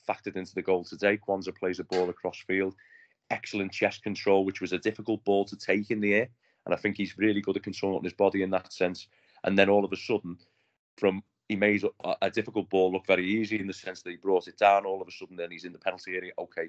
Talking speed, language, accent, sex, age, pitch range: 255 wpm, English, British, male, 30-49, 90-105 Hz